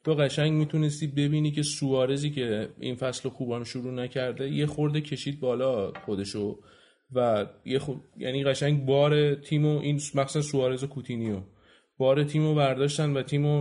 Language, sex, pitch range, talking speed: Persian, male, 125-150 Hz, 145 wpm